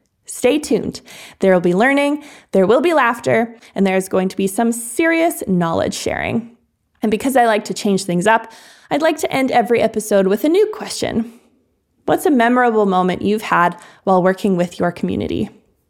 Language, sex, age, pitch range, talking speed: English, female, 20-39, 195-245 Hz, 175 wpm